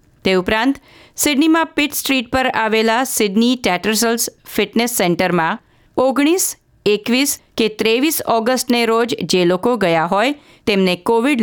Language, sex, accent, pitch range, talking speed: Gujarati, female, native, 185-255 Hz, 105 wpm